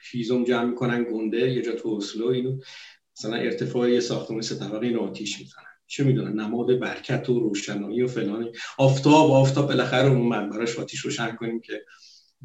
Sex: male